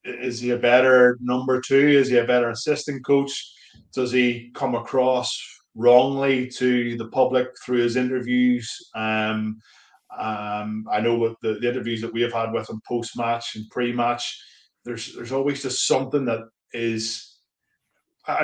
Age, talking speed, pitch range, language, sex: 20-39, 155 wpm, 115-130 Hz, English, male